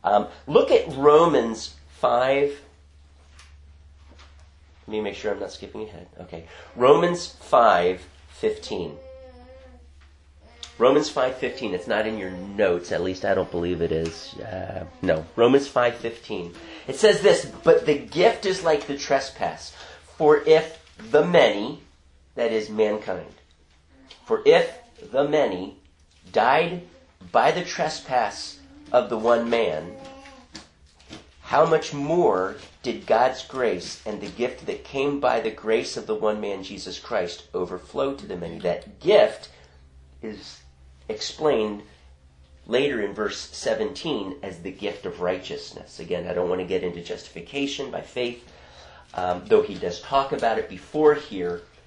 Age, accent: 40-59, American